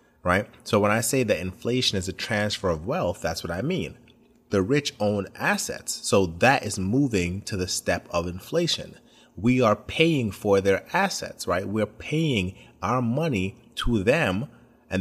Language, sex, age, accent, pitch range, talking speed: English, male, 30-49, American, 95-120 Hz, 170 wpm